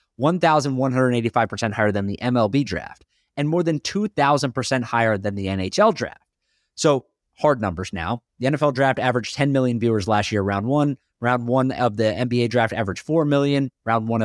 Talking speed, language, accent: 170 wpm, English, American